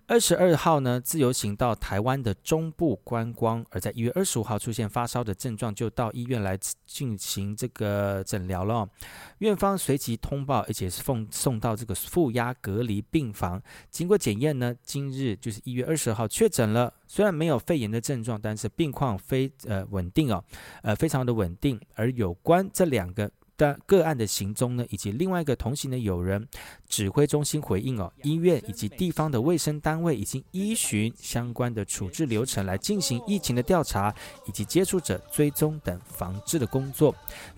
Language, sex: Chinese, male